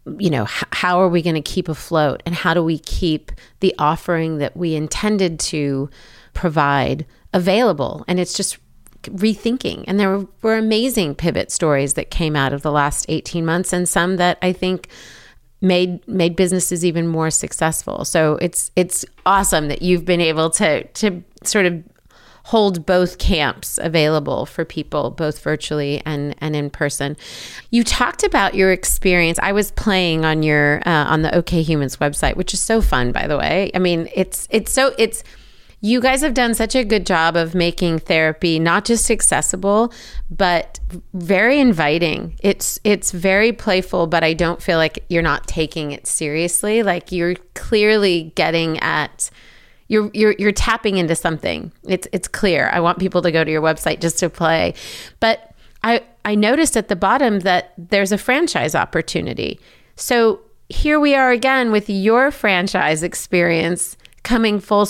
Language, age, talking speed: English, 30-49, 170 wpm